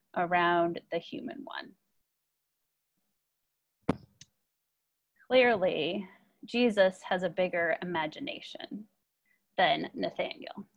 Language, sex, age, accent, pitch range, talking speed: English, female, 30-49, American, 190-260 Hz, 65 wpm